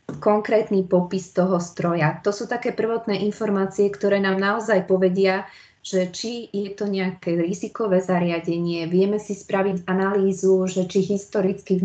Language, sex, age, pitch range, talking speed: Slovak, female, 20-39, 175-190 Hz, 140 wpm